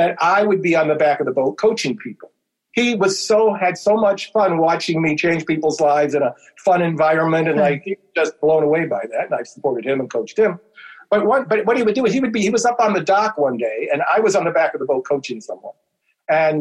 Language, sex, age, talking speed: English, male, 50-69, 270 wpm